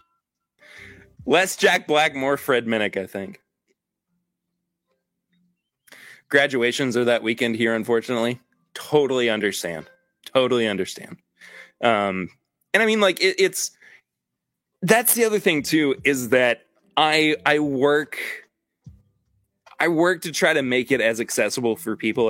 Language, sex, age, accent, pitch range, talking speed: English, male, 20-39, American, 115-175 Hz, 120 wpm